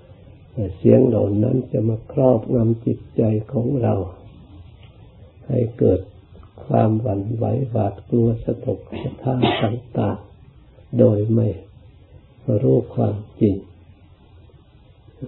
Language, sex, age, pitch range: Thai, male, 60-79, 100-120 Hz